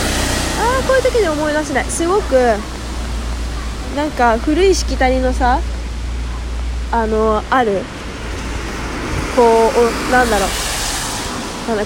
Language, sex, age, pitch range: Japanese, female, 20-39, 220-330 Hz